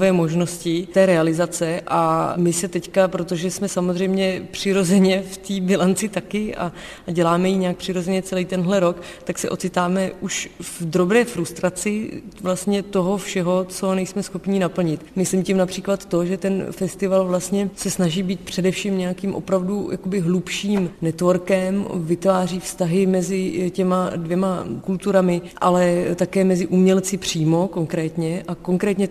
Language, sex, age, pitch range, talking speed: Czech, female, 30-49, 175-190 Hz, 140 wpm